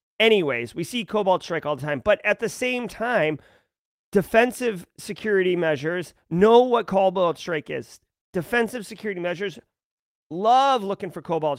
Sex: male